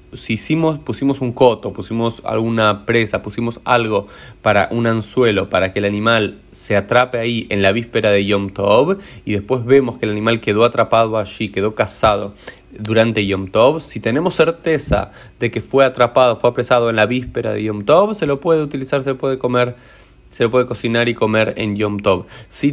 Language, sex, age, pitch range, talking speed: Spanish, male, 20-39, 105-130 Hz, 195 wpm